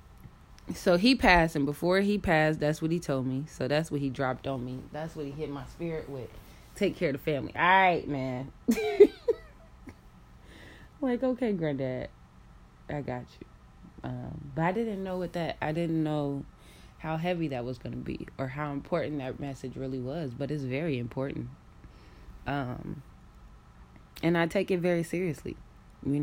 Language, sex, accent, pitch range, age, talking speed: English, female, American, 135-175 Hz, 20-39, 175 wpm